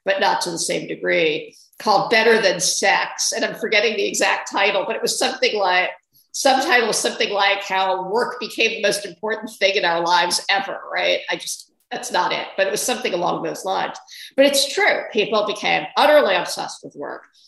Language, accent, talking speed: English, American, 195 wpm